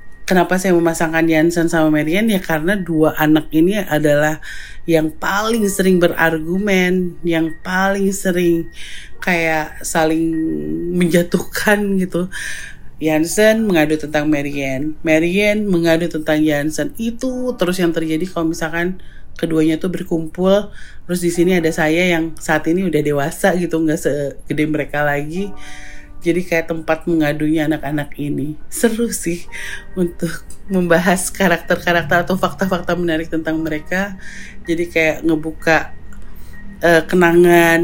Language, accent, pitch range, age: Indonesian, native, 155-175 Hz, 30-49